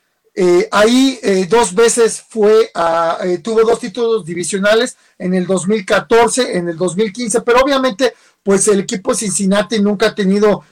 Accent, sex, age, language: Mexican, male, 40-59, Spanish